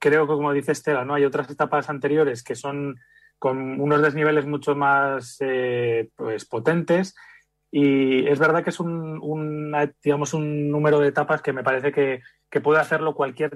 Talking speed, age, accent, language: 175 wpm, 30-49, Spanish, Spanish